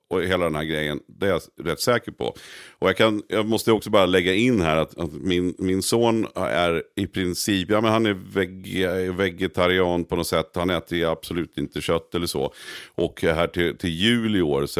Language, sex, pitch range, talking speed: Swedish, male, 80-100 Hz, 215 wpm